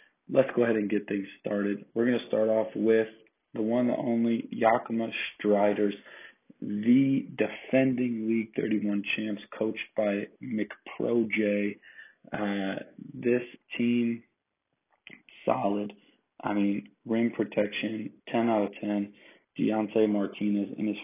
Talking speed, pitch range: 125 wpm, 100-115 Hz